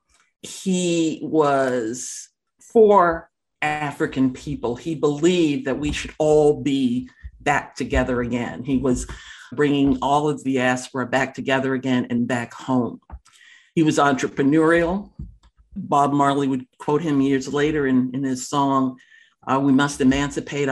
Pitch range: 130-165 Hz